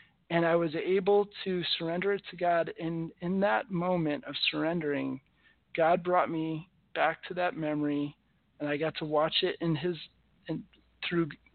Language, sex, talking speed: English, male, 165 wpm